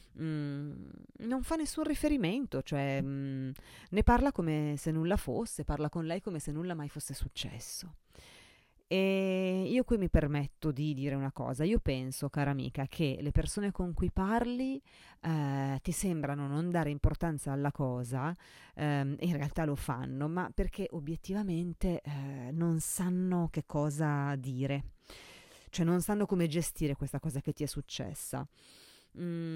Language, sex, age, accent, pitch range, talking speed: Italian, female, 30-49, native, 140-170 Hz, 150 wpm